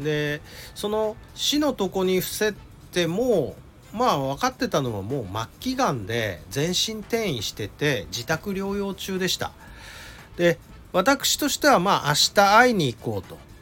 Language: Japanese